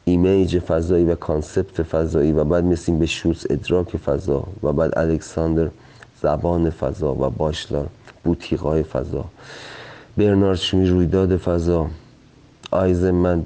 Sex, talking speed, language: male, 115 wpm, Persian